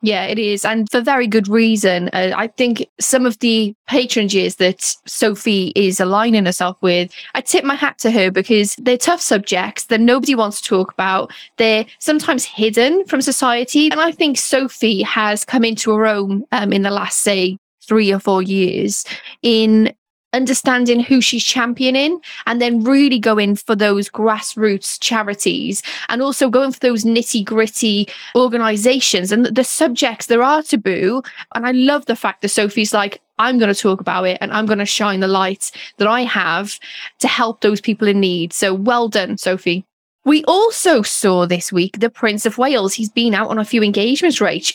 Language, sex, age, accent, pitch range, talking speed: English, female, 10-29, British, 200-245 Hz, 185 wpm